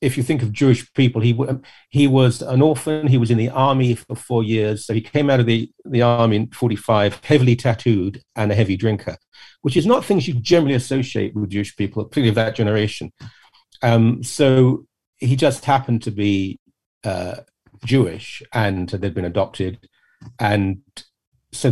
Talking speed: 175 wpm